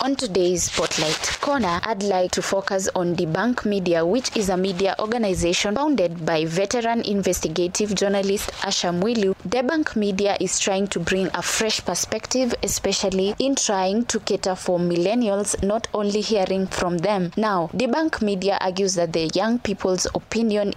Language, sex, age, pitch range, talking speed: English, female, 20-39, 180-220 Hz, 155 wpm